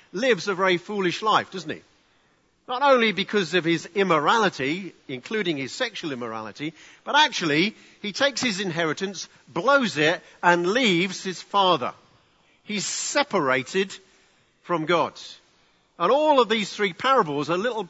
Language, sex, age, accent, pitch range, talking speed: English, male, 50-69, British, 145-200 Hz, 135 wpm